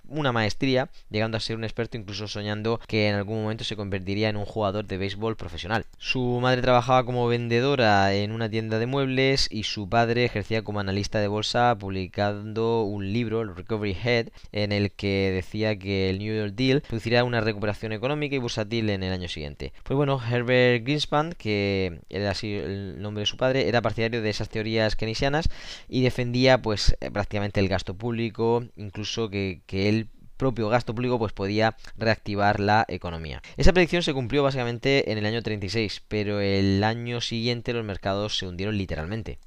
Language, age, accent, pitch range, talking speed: Spanish, 20-39, Spanish, 100-120 Hz, 180 wpm